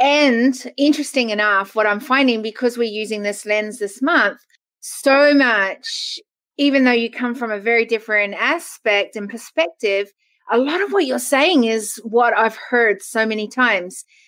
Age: 30-49